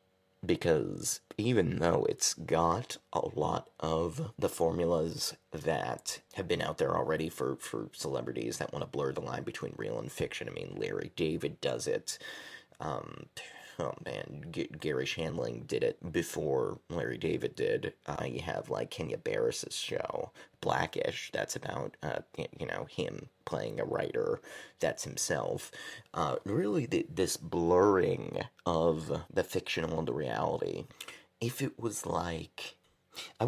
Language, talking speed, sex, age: English, 145 wpm, male, 30-49